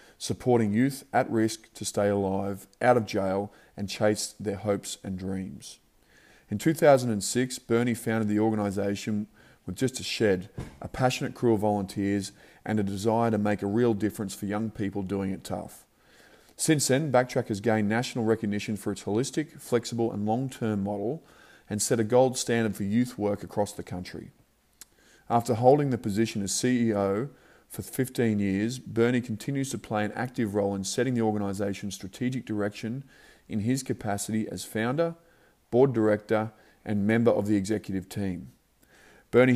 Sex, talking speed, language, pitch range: male, 160 wpm, English, 100-120 Hz